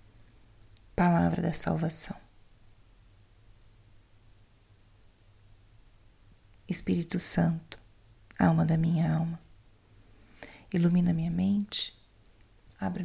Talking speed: 60 wpm